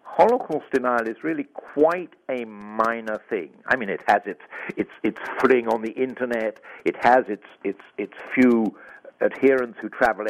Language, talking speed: English, 165 wpm